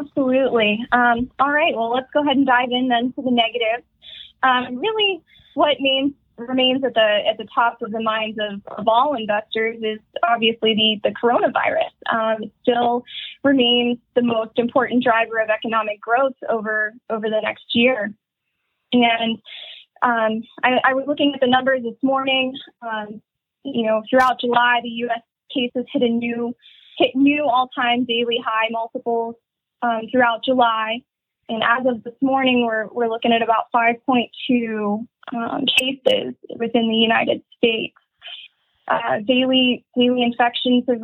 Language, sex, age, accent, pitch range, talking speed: English, female, 20-39, American, 225-260 Hz, 155 wpm